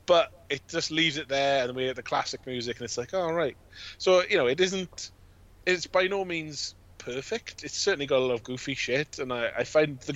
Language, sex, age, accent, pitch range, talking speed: English, male, 20-39, British, 100-140 Hz, 240 wpm